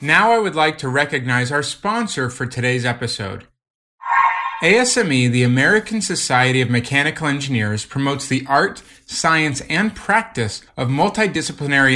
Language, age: English, 30-49